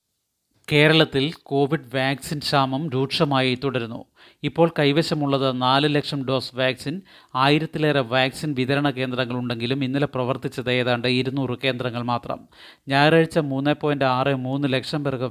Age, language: 30-49, Malayalam